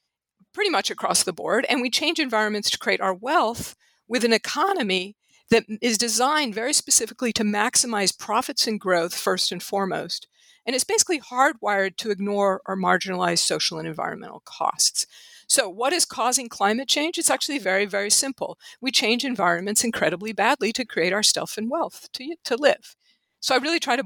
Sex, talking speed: female, 175 wpm